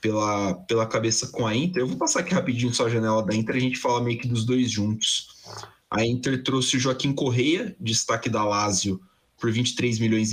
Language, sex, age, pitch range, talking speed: Portuguese, male, 20-39, 110-130 Hz, 210 wpm